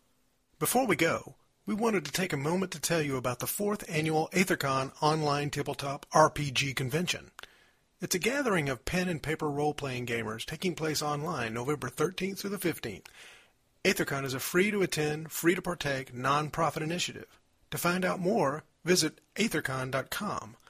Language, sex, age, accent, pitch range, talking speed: English, male, 40-59, American, 140-175 Hz, 165 wpm